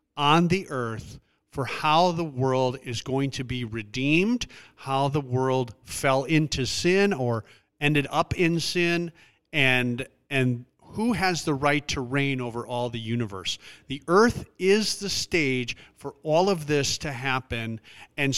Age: 40-59